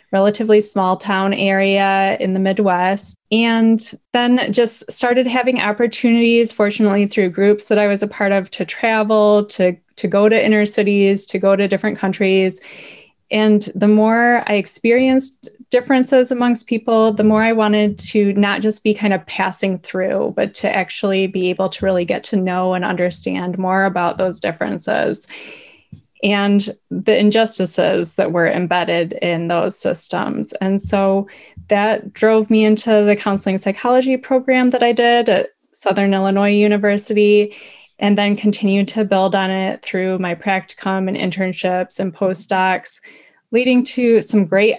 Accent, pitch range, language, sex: American, 190-220 Hz, English, female